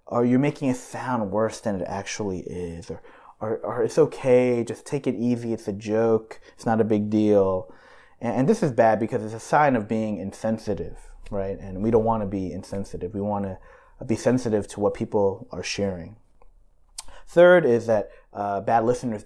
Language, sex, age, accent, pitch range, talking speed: English, male, 30-49, American, 100-120 Hz, 185 wpm